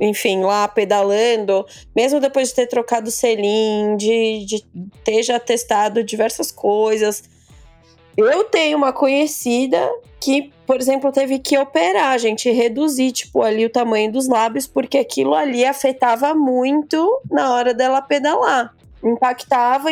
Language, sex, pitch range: Portuguese, female, 230-285 Hz